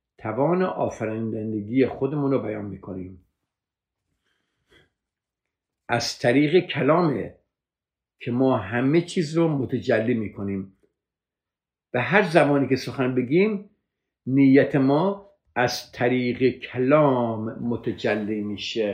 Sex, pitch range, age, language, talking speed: male, 105-160 Hz, 50-69, Persian, 90 wpm